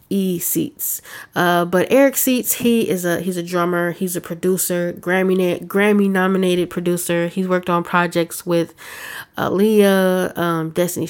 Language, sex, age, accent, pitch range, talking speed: English, female, 20-39, American, 170-185 Hz, 150 wpm